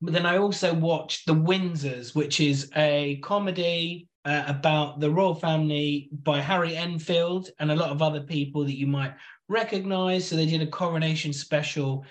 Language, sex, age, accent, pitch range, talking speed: English, male, 20-39, British, 140-165 Hz, 175 wpm